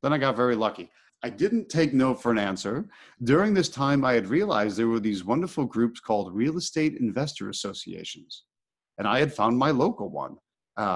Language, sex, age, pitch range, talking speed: English, male, 40-59, 110-160 Hz, 195 wpm